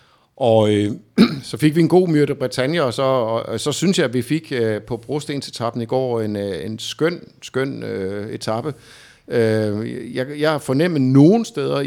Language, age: Danish, 50-69